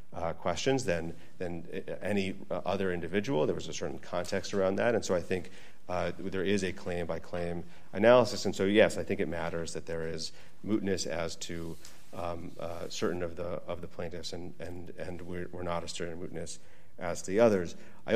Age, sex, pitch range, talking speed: 40-59, male, 85-90 Hz, 200 wpm